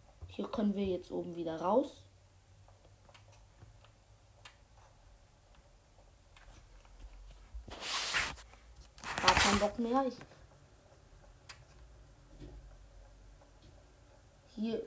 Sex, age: female, 20-39